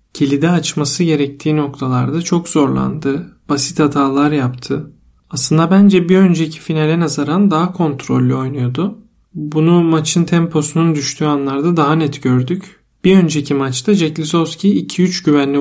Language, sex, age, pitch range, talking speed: Turkish, male, 40-59, 140-165 Hz, 125 wpm